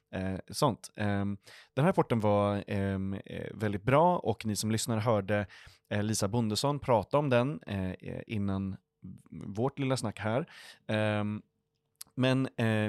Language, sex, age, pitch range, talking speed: Swedish, male, 30-49, 100-125 Hz, 105 wpm